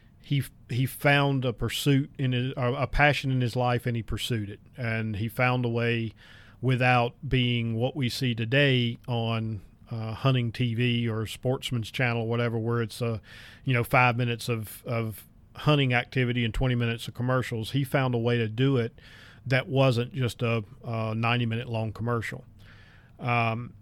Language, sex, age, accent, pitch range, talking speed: English, male, 40-59, American, 115-130 Hz, 175 wpm